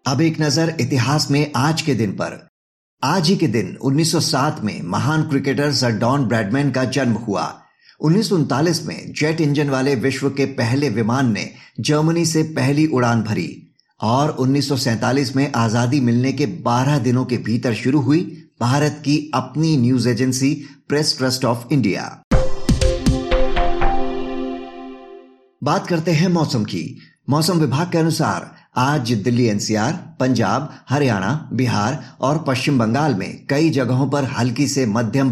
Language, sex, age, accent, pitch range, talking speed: Hindi, male, 50-69, native, 125-155 Hz, 145 wpm